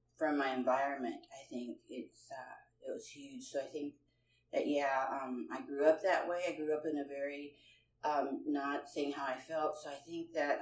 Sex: female